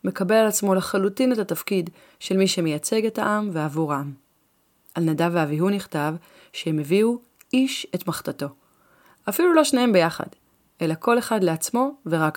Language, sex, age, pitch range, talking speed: Hebrew, female, 30-49, 160-205 Hz, 150 wpm